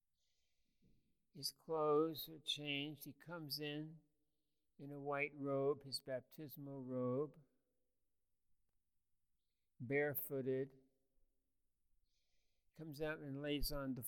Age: 60-79